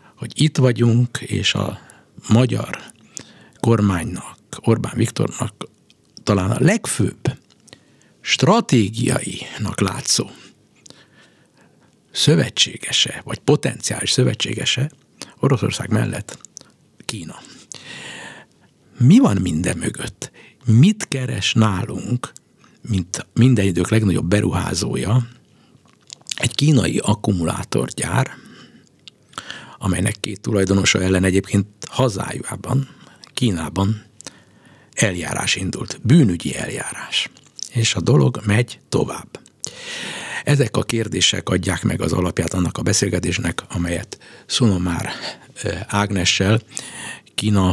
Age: 60-79